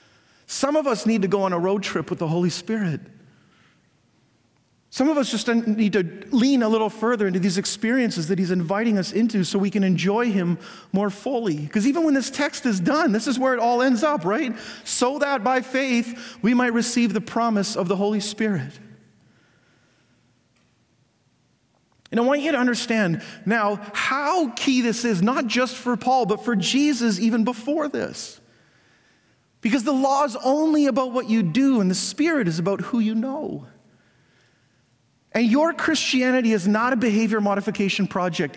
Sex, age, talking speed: male, 40-59, 175 wpm